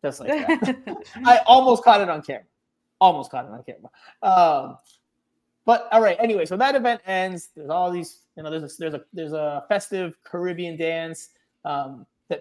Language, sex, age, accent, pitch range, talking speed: English, male, 20-39, American, 145-185 Hz, 190 wpm